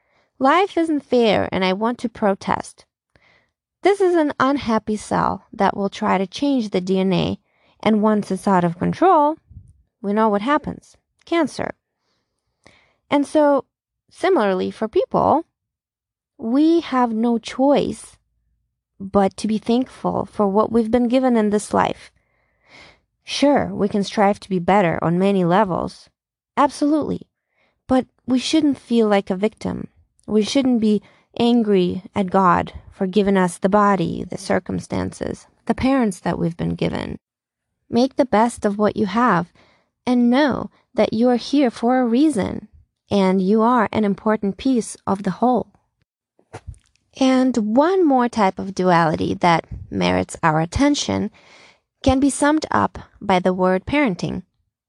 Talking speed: 145 wpm